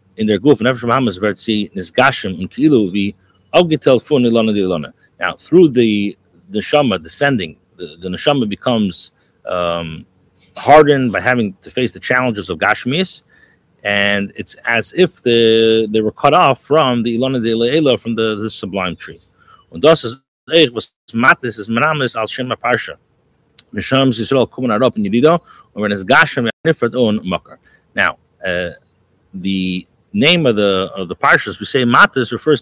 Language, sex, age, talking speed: English, male, 40-59, 120 wpm